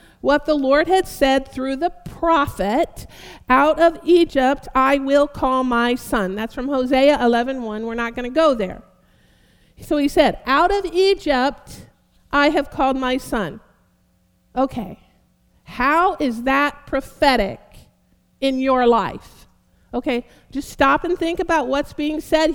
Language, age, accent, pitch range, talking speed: English, 50-69, American, 260-355 Hz, 145 wpm